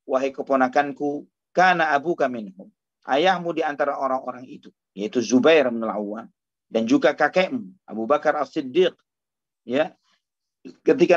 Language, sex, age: Indonesian, male, 40-59